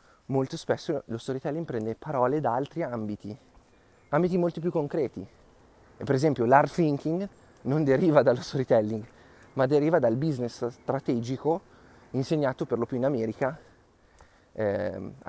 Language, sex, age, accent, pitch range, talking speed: Italian, male, 30-49, native, 110-130 Hz, 130 wpm